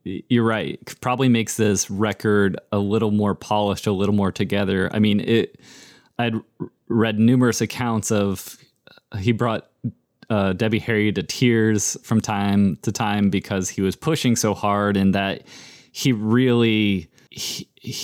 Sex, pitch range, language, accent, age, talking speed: male, 100-120 Hz, English, American, 20-39, 150 wpm